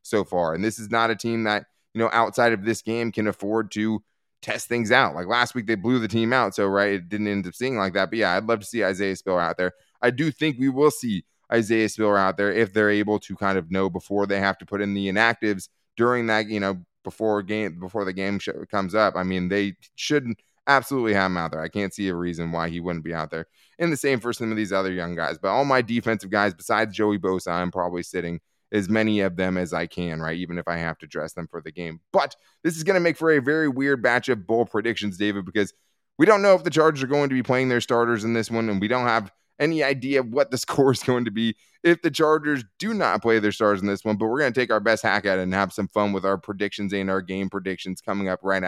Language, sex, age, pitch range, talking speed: English, male, 20-39, 95-125 Hz, 275 wpm